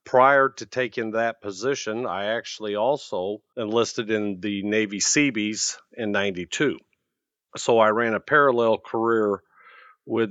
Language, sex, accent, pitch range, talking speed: English, male, American, 105-125 Hz, 130 wpm